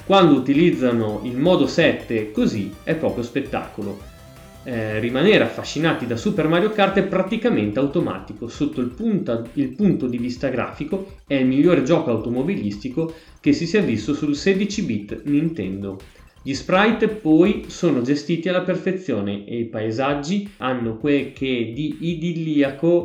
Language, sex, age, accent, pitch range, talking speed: Italian, male, 20-39, native, 115-170 Hz, 140 wpm